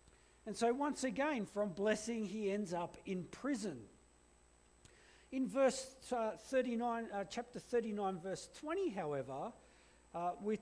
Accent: Australian